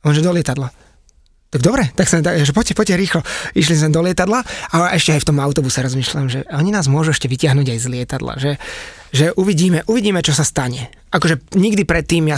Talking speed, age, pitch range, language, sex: 210 wpm, 20-39, 145-180 Hz, Slovak, male